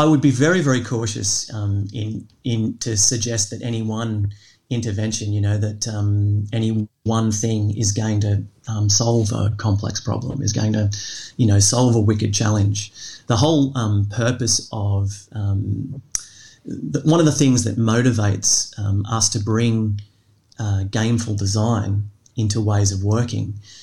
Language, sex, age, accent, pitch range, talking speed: English, male, 30-49, Australian, 105-120 Hz, 155 wpm